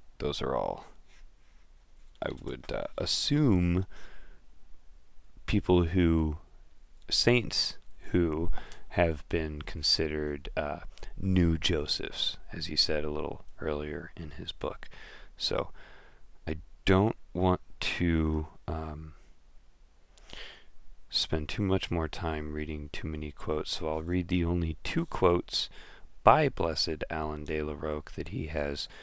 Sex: male